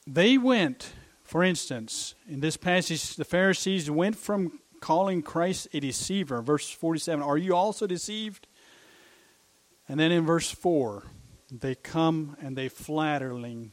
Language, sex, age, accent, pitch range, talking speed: English, male, 50-69, American, 120-185 Hz, 135 wpm